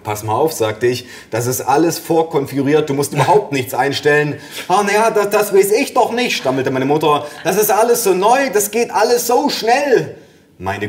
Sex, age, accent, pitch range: male, 30-49, German, 125-170 Hz